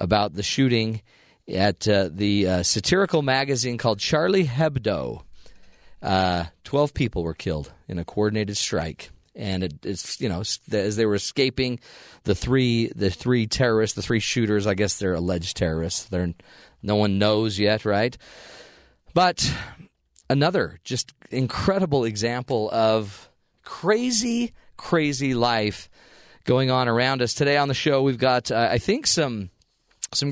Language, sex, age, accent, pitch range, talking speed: English, male, 40-59, American, 105-130 Hz, 145 wpm